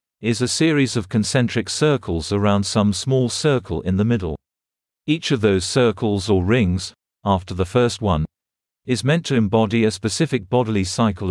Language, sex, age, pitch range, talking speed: English, male, 50-69, 100-120 Hz, 165 wpm